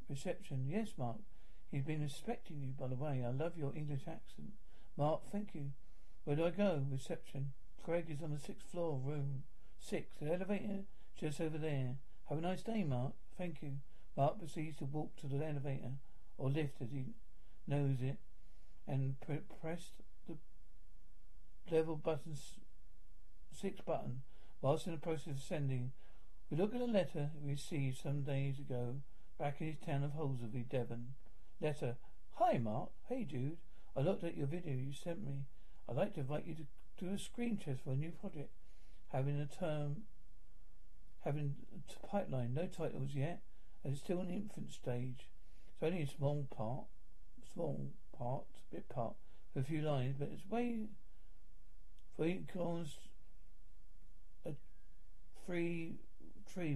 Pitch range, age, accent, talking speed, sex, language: 135-170 Hz, 50-69, British, 160 wpm, male, English